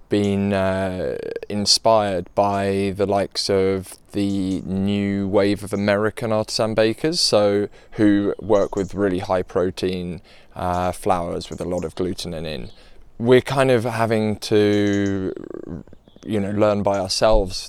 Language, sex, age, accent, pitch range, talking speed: English, male, 20-39, British, 95-105 Hz, 130 wpm